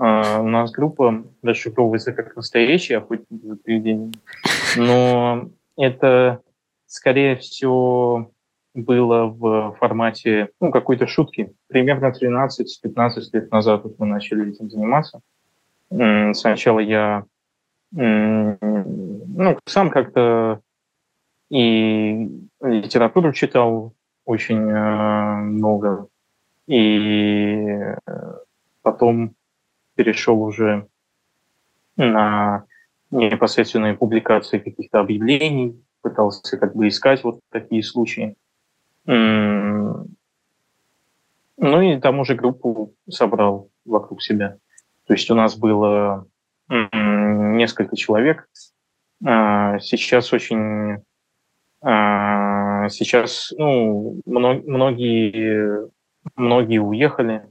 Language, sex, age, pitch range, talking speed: Russian, male, 20-39, 105-125 Hz, 80 wpm